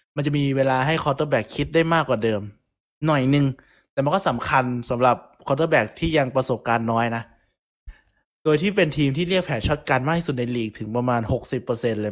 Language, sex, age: Thai, male, 20-39